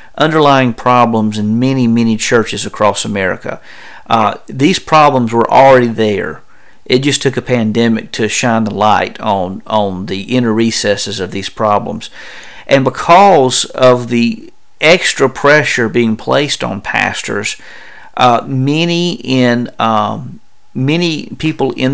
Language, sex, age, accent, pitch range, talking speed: English, male, 50-69, American, 110-130 Hz, 130 wpm